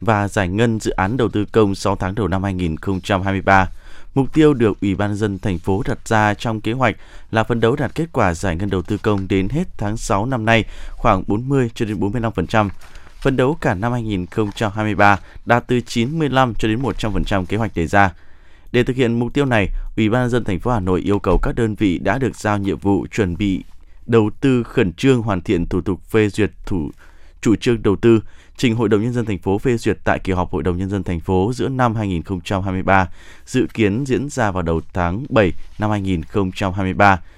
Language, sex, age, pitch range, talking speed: Vietnamese, male, 20-39, 95-120 Hz, 215 wpm